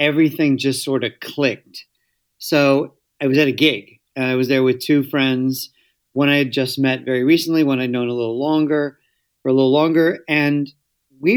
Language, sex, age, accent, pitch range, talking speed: English, male, 40-59, American, 130-160 Hz, 195 wpm